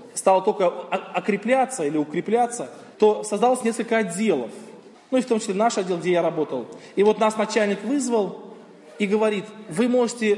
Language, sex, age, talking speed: Russian, male, 20-39, 170 wpm